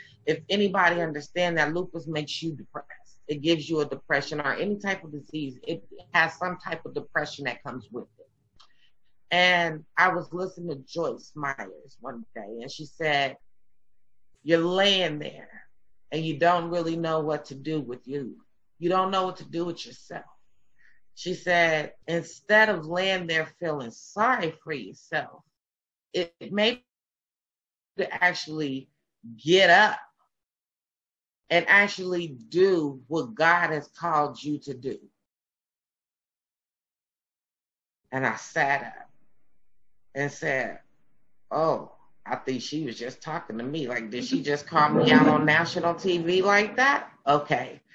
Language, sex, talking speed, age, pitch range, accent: English, female, 145 wpm, 30-49, 145-175 Hz, American